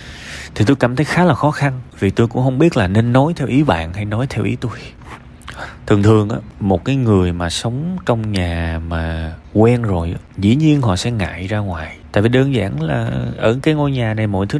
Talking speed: 230 wpm